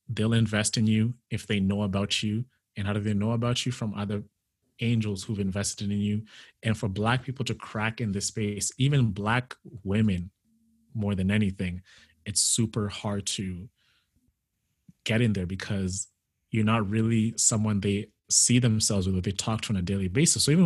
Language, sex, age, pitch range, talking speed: English, male, 30-49, 100-115 Hz, 185 wpm